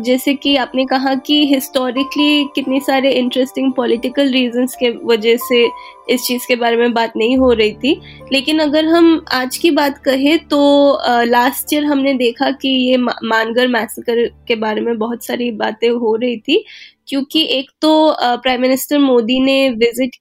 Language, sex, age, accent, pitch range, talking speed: Hindi, female, 20-39, native, 245-290 Hz, 170 wpm